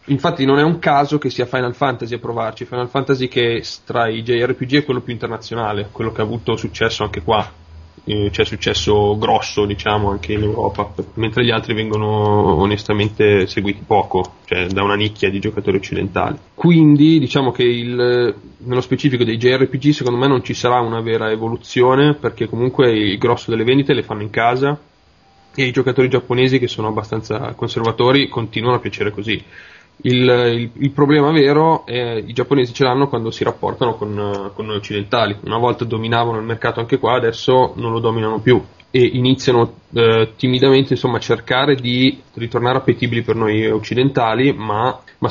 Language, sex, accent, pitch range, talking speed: Italian, male, native, 110-130 Hz, 175 wpm